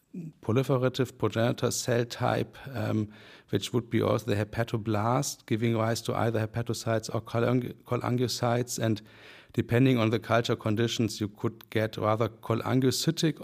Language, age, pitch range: English, 60-79, 105-120 Hz